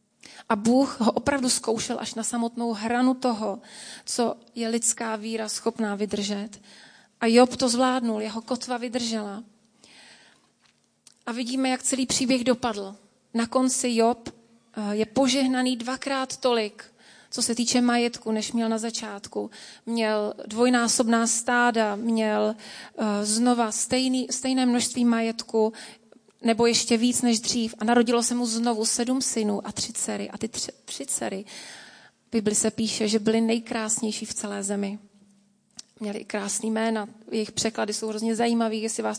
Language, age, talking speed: Czech, 30-49, 140 wpm